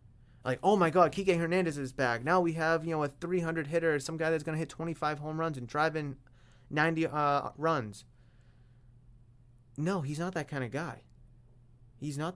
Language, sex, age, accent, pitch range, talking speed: English, male, 20-39, American, 120-160 Hz, 195 wpm